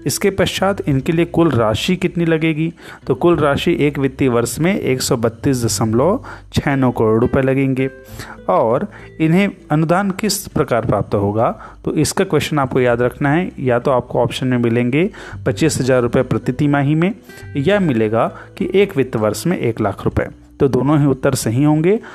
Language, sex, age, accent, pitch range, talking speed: Hindi, male, 30-49, native, 125-160 Hz, 170 wpm